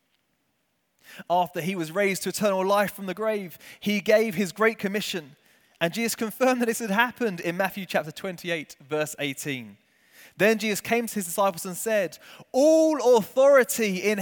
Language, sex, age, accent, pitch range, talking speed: English, male, 20-39, British, 170-235 Hz, 165 wpm